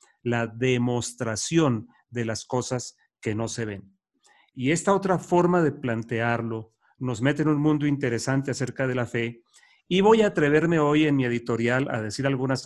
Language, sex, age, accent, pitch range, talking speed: English, male, 40-59, Mexican, 120-155 Hz, 170 wpm